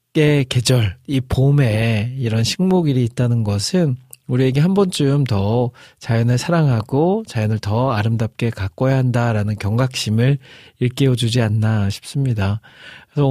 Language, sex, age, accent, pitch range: Korean, male, 40-59, native, 115-140 Hz